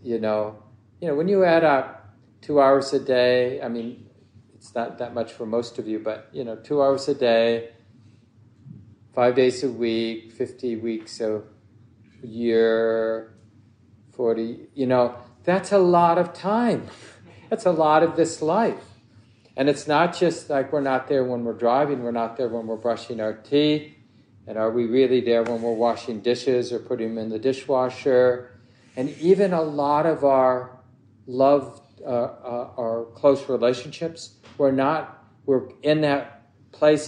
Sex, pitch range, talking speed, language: male, 110-135 Hz, 165 wpm, English